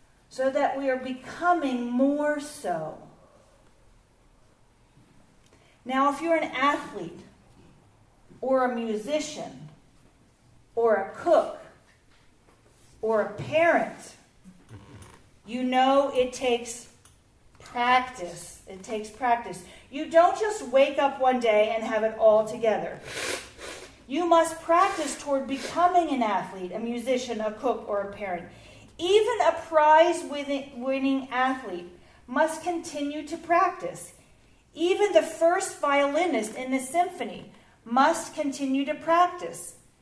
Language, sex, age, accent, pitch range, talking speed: English, female, 40-59, American, 240-320 Hz, 110 wpm